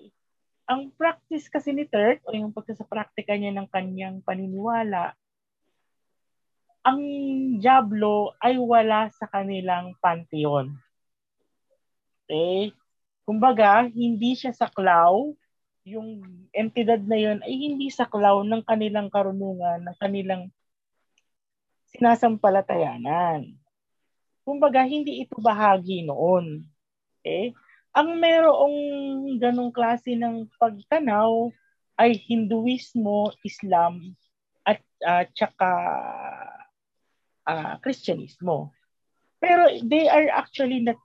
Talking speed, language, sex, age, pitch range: 95 wpm, Filipino, female, 40-59, 195-260 Hz